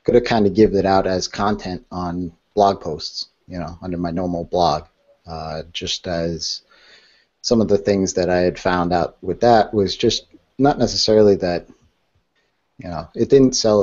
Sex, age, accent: male, 30-49, American